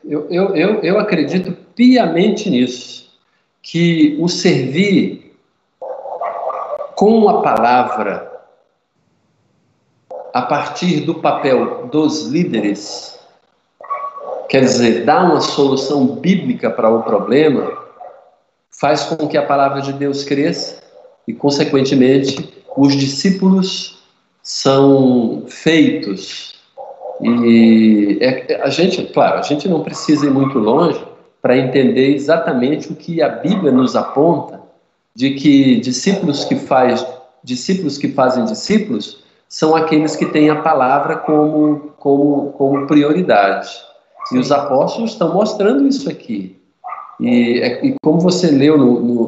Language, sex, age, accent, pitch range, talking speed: Portuguese, male, 50-69, Brazilian, 135-180 Hz, 115 wpm